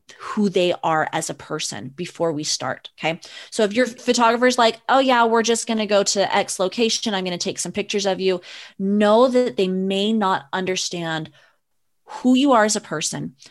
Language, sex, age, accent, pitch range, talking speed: English, female, 20-39, American, 180-230 Hz, 205 wpm